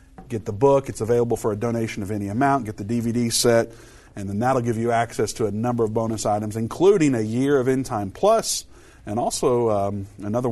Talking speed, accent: 215 wpm, American